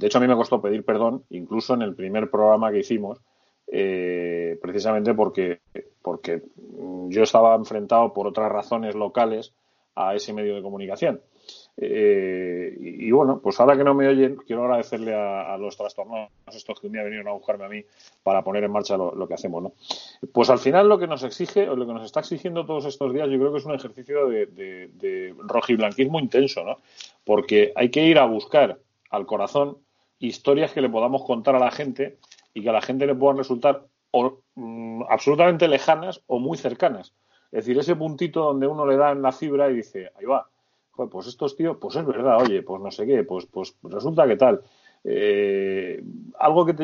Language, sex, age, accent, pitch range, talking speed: Spanish, male, 30-49, Spanish, 110-150 Hz, 205 wpm